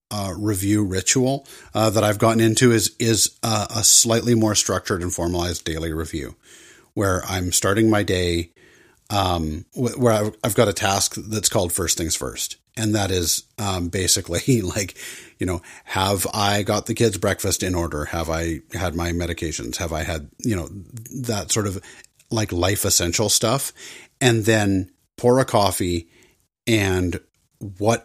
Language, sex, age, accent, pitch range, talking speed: English, male, 40-59, American, 90-115 Hz, 165 wpm